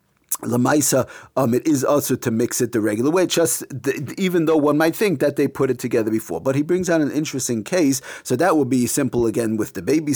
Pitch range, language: 125-155 Hz, English